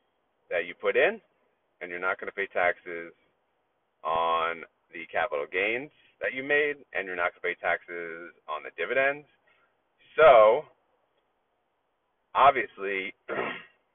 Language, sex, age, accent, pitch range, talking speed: English, male, 40-59, American, 370-485 Hz, 130 wpm